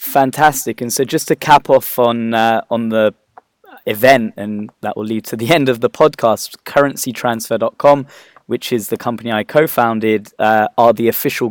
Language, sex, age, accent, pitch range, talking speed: English, male, 20-39, British, 110-120 Hz, 175 wpm